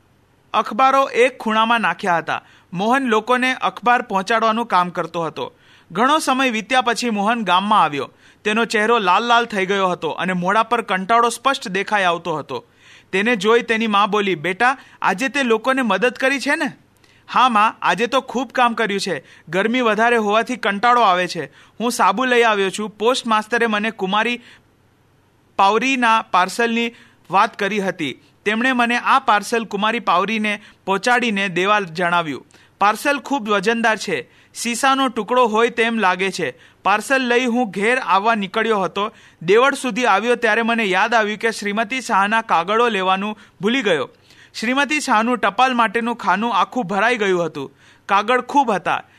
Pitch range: 195-245 Hz